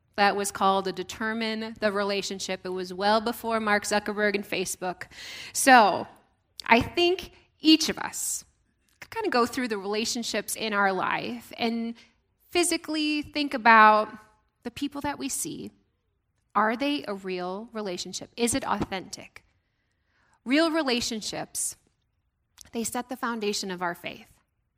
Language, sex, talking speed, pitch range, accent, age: English, female, 140 wpm, 195-260 Hz, American, 10-29